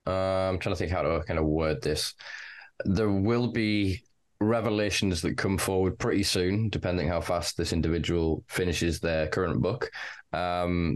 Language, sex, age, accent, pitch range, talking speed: English, male, 20-39, British, 80-95 Hz, 165 wpm